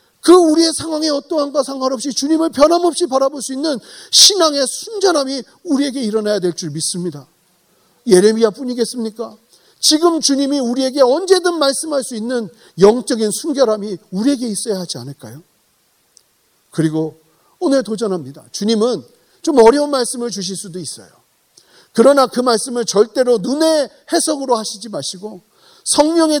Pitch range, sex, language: 195-300 Hz, male, Korean